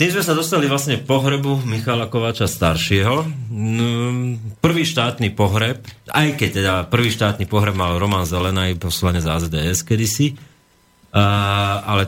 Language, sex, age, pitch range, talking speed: Slovak, male, 40-59, 95-120 Hz, 125 wpm